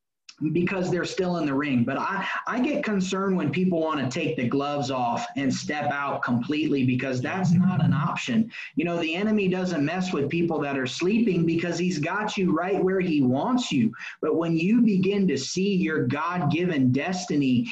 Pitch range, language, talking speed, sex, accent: 150-195 Hz, English, 195 wpm, male, American